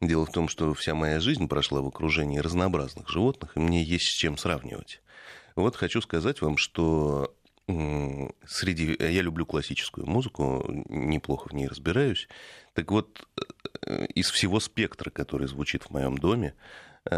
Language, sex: Russian, male